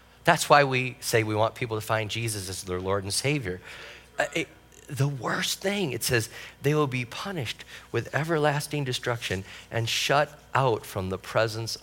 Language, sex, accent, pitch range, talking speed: English, male, American, 105-135 Hz, 175 wpm